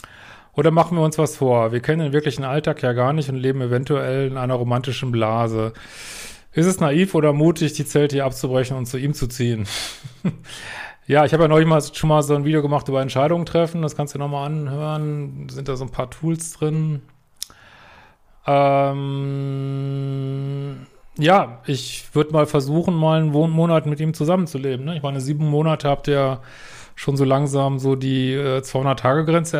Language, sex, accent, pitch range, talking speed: German, male, German, 125-150 Hz, 180 wpm